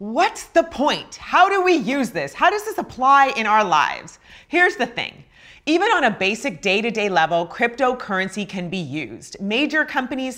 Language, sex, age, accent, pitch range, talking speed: English, female, 30-49, American, 180-245 Hz, 175 wpm